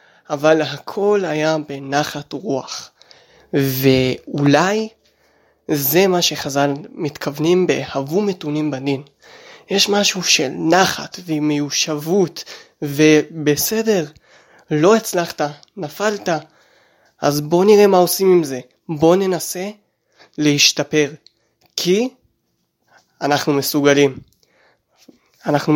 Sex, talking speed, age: male, 80 wpm, 20-39